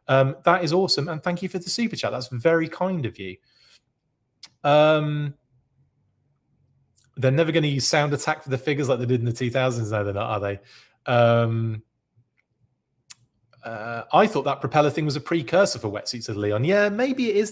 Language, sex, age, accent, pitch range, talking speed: English, male, 30-49, British, 120-150 Hz, 190 wpm